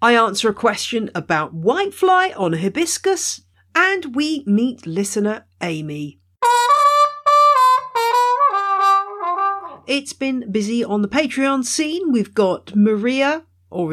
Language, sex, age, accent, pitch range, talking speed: English, female, 50-69, British, 170-250 Hz, 105 wpm